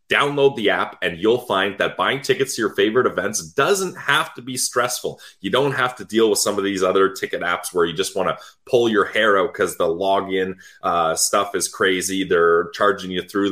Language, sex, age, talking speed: English, male, 20-39, 220 wpm